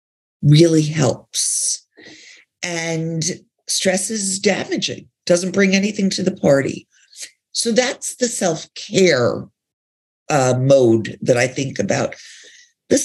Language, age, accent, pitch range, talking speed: English, 50-69, American, 140-210 Hz, 100 wpm